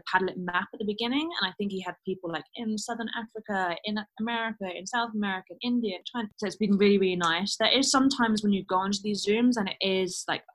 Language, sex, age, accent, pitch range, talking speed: English, female, 20-39, British, 170-210 Hz, 240 wpm